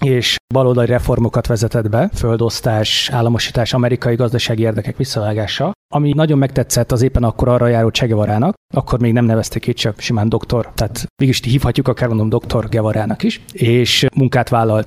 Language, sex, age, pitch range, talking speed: Hungarian, male, 30-49, 115-130 Hz, 155 wpm